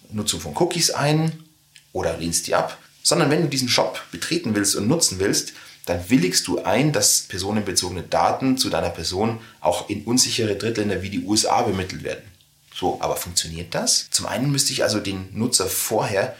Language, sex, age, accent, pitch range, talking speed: German, male, 30-49, German, 100-135 Hz, 180 wpm